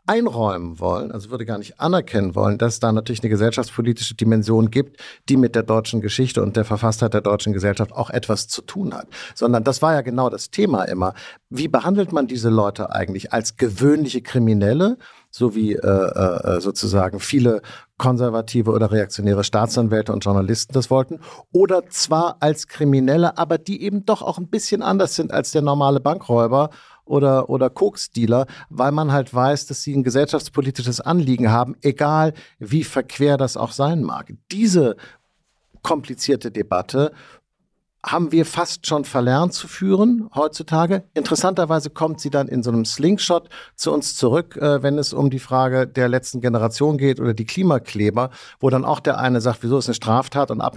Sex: male